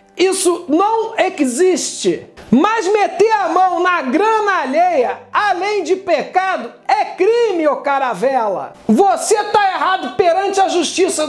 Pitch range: 285-380 Hz